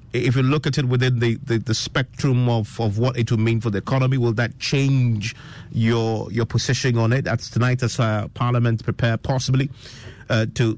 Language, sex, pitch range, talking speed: English, male, 110-130 Hz, 200 wpm